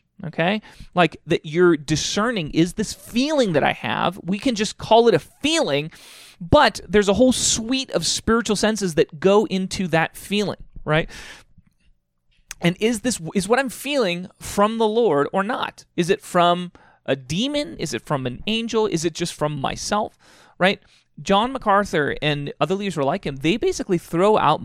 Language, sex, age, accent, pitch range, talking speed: English, male, 30-49, American, 150-210 Hz, 180 wpm